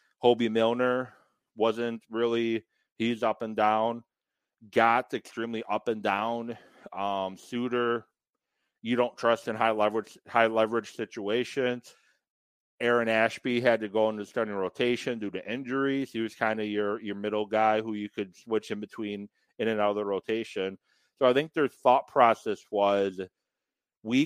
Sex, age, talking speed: male, 40-59, 155 wpm